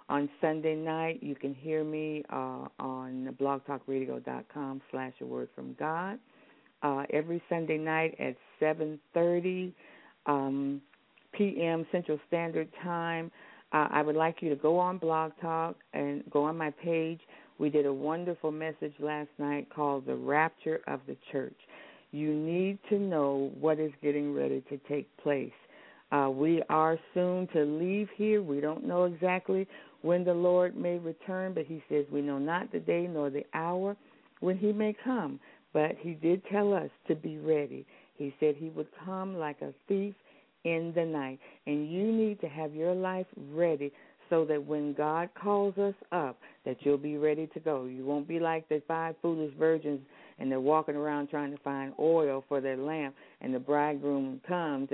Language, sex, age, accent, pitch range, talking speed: English, female, 50-69, American, 145-175 Hz, 175 wpm